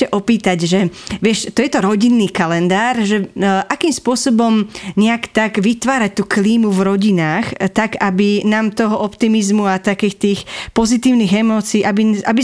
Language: English